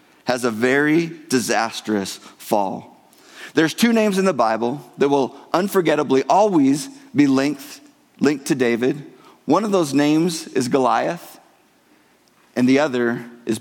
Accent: American